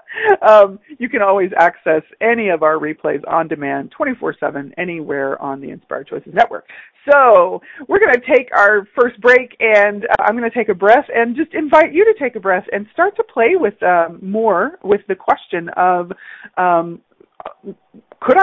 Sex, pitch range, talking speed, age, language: female, 165-245 Hz, 180 wpm, 50-69, English